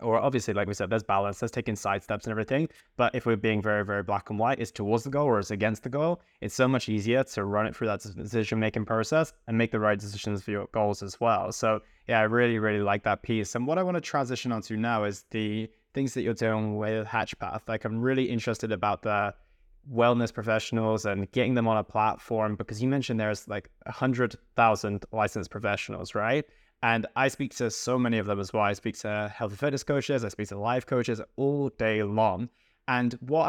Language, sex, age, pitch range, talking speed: English, male, 20-39, 105-125 Hz, 225 wpm